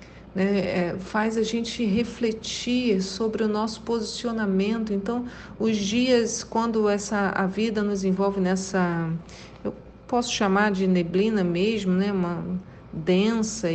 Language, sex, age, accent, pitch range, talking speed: Portuguese, female, 40-59, Brazilian, 200-245 Hz, 120 wpm